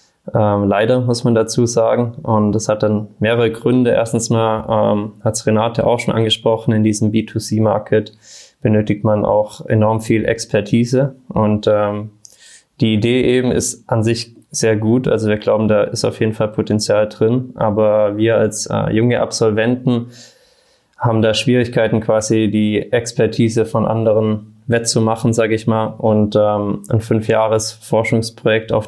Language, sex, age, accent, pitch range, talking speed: German, male, 20-39, German, 105-115 Hz, 155 wpm